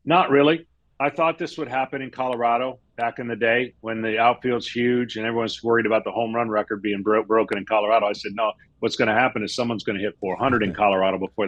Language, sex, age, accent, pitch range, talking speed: English, male, 40-59, American, 115-145 Hz, 235 wpm